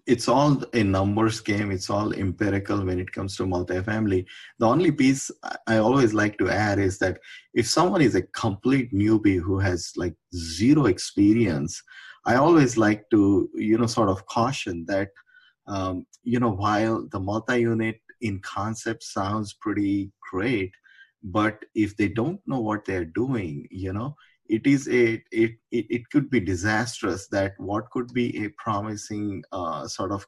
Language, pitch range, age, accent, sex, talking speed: English, 100-115 Hz, 20-39, Indian, male, 165 wpm